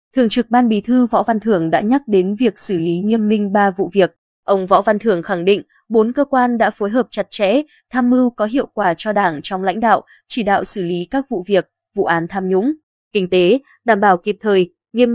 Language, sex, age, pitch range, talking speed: Vietnamese, female, 20-39, 185-235 Hz, 240 wpm